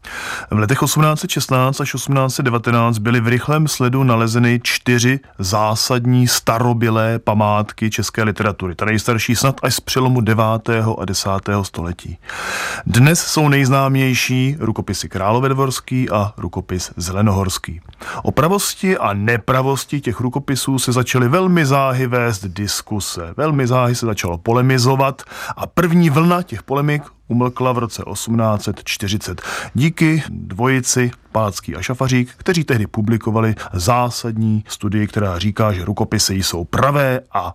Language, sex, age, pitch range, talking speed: Czech, male, 30-49, 105-135 Hz, 125 wpm